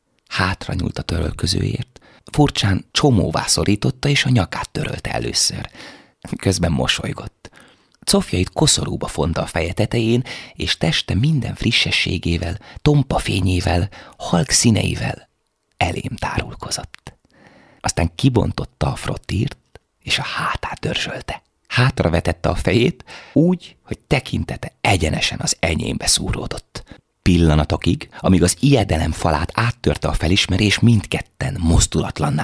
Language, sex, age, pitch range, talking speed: Hungarian, male, 30-49, 85-125 Hz, 110 wpm